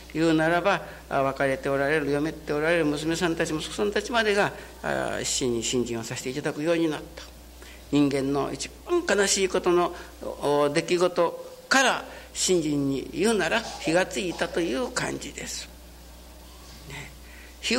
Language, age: Japanese, 60-79